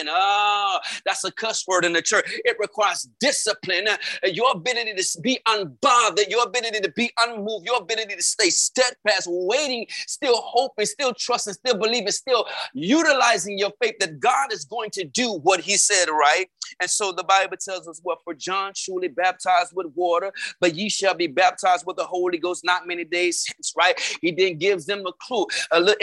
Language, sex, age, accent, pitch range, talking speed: English, male, 30-49, American, 175-235 Hz, 190 wpm